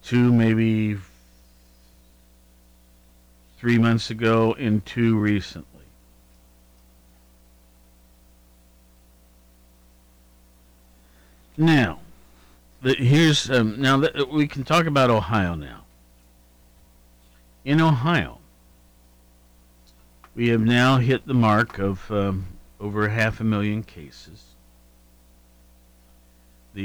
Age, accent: 50-69, American